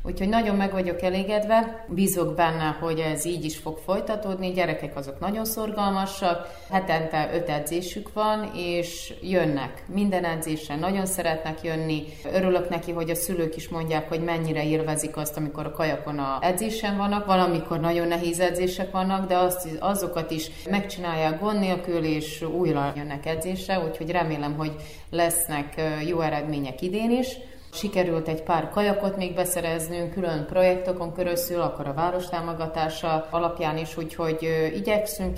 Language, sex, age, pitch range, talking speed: Hungarian, female, 30-49, 160-190 Hz, 145 wpm